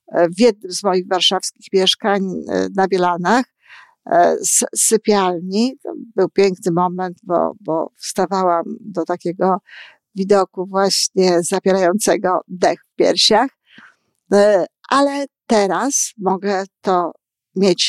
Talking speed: 95 wpm